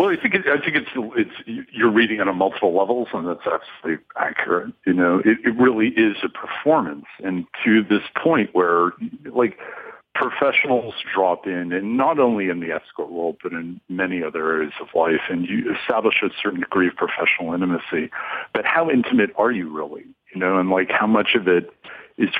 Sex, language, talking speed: male, English, 195 wpm